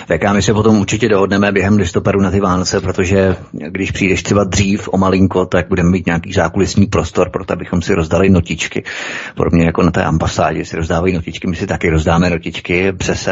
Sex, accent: male, native